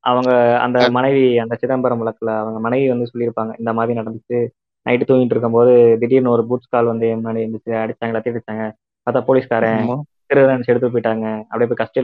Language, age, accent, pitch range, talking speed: Tamil, 20-39, native, 120-145 Hz, 180 wpm